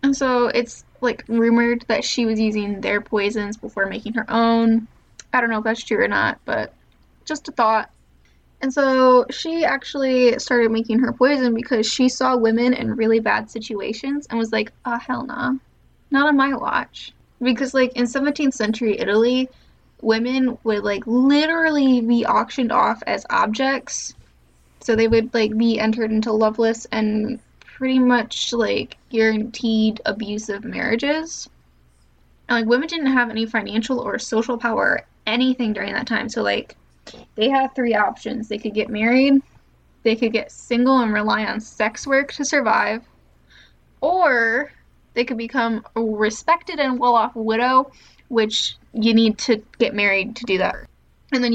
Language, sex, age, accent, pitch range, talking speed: English, female, 10-29, American, 220-255 Hz, 160 wpm